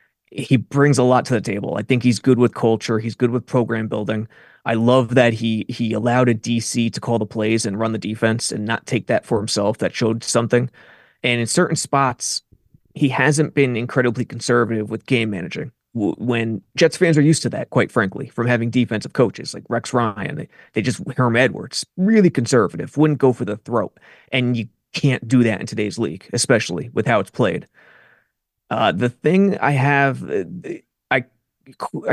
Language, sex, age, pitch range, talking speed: English, male, 20-39, 115-140 Hz, 190 wpm